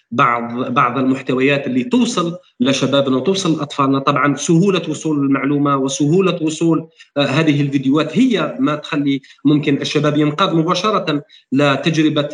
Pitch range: 145-180 Hz